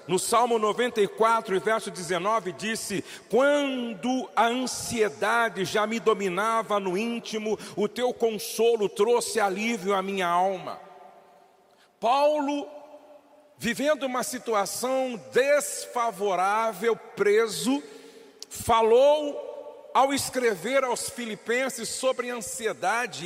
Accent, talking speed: Brazilian, 95 wpm